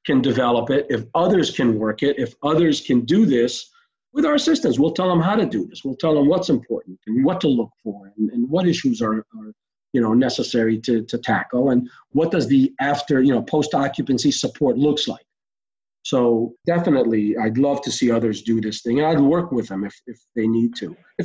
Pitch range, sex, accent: 130-215 Hz, male, American